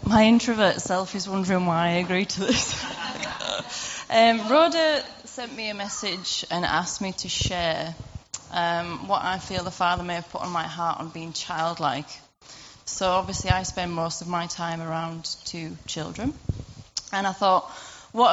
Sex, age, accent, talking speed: female, 20-39, British, 165 wpm